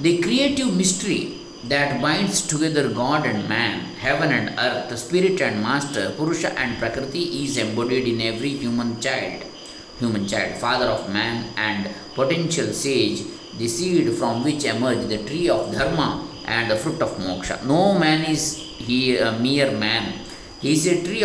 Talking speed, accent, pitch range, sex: 165 wpm, native, 120-170 Hz, male